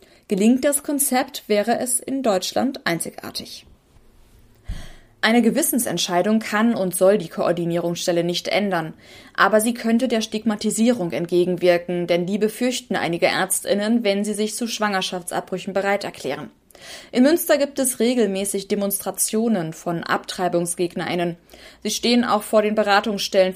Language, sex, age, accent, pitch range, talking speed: German, female, 20-39, German, 190-240 Hz, 125 wpm